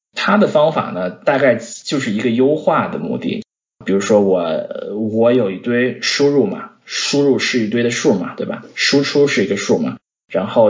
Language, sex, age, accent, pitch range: Chinese, male, 20-39, native, 110-145 Hz